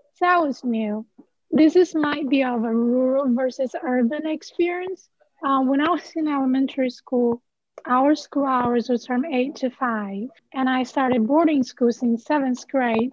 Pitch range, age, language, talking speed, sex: 245-300 Hz, 20-39, English, 170 wpm, female